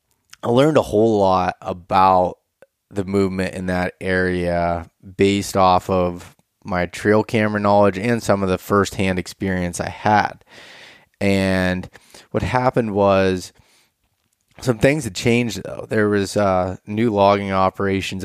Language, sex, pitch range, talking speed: English, male, 90-105 Hz, 135 wpm